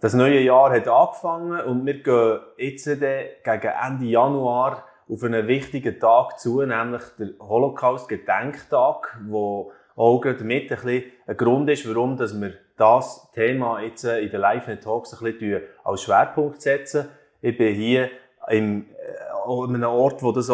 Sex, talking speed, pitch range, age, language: male, 135 wpm, 110-130 Hz, 30-49, German